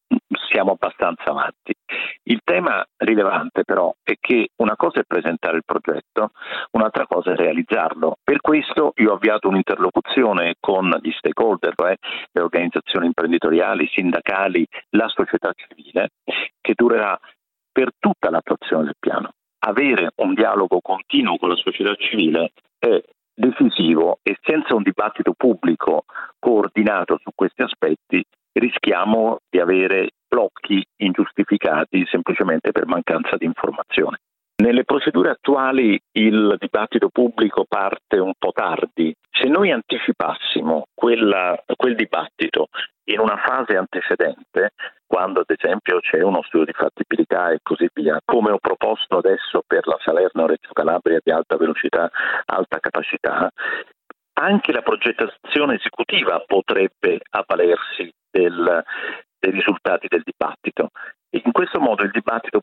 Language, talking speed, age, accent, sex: Italian, 125 wpm, 50-69, native, male